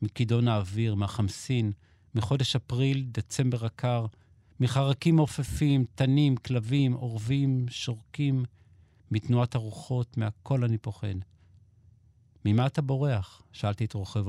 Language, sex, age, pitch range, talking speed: Hebrew, male, 50-69, 100-125 Hz, 100 wpm